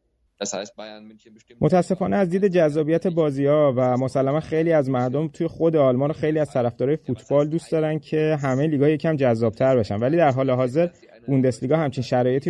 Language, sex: Persian, male